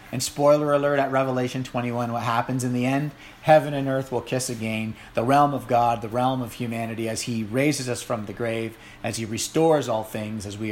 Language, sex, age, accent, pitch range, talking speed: English, male, 40-59, American, 110-145 Hz, 220 wpm